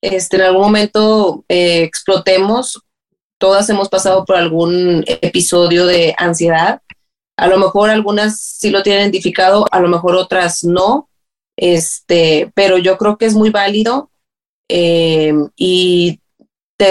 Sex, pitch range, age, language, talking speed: female, 185-220 Hz, 30-49, Spanish, 135 wpm